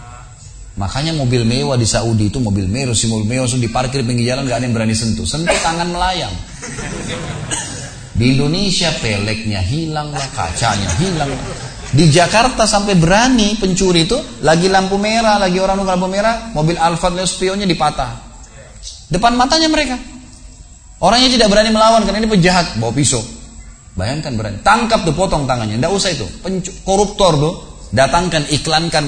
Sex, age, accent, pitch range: male, 30-49, native, 120-190 Hz